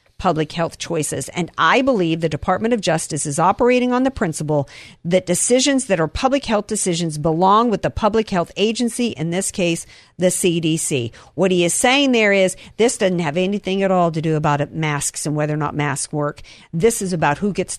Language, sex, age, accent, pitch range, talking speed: English, female, 50-69, American, 155-205 Hz, 200 wpm